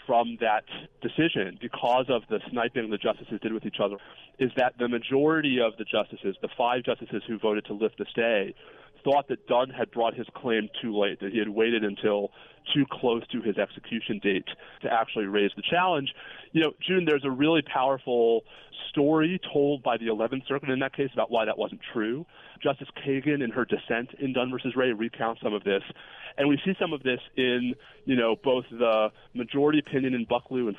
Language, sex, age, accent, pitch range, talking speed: English, male, 30-49, American, 115-140 Hz, 205 wpm